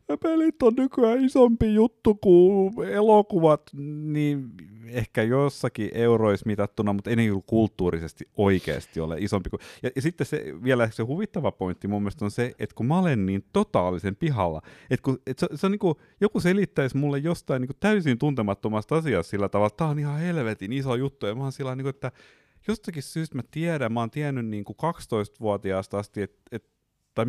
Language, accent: Finnish, native